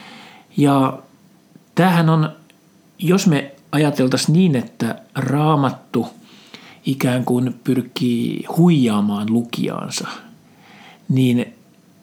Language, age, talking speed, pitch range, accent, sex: Finnish, 60-79, 75 wpm, 130-175 Hz, native, male